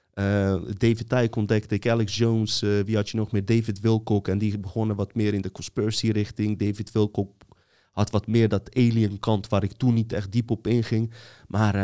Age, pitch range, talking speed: 30-49, 95-110 Hz, 210 wpm